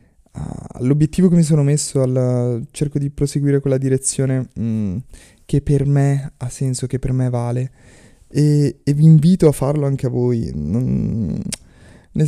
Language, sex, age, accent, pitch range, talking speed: Italian, male, 20-39, native, 110-125 Hz, 160 wpm